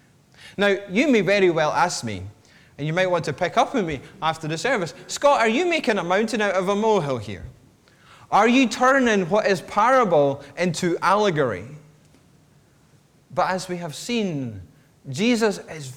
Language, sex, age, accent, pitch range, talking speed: English, male, 30-49, British, 150-215 Hz, 170 wpm